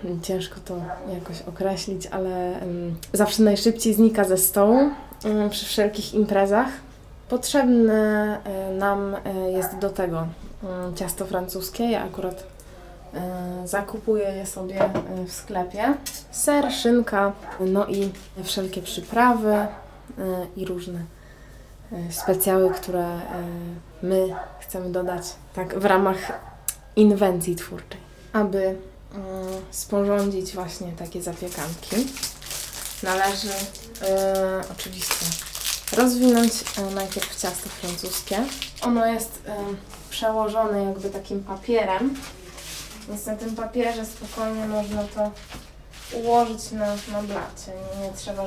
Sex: female